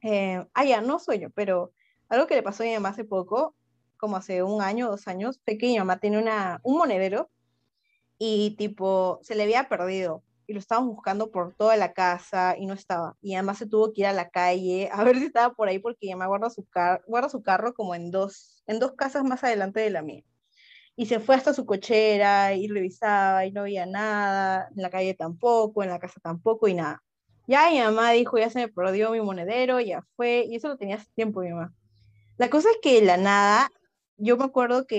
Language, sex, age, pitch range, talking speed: Spanish, female, 20-39, 190-245 Hz, 225 wpm